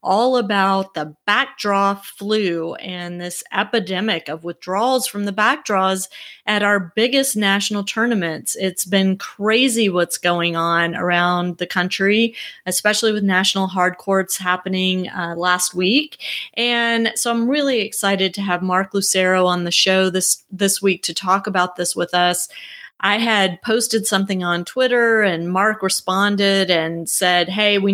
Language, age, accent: English, 30-49, American